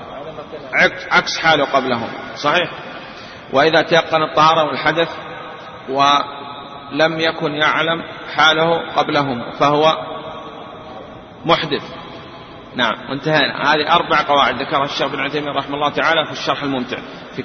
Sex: male